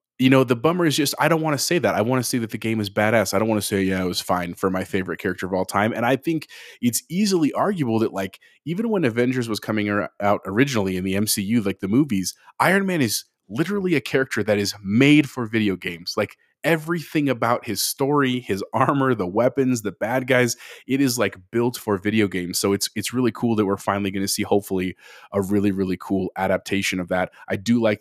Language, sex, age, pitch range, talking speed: English, male, 30-49, 95-130 Hz, 240 wpm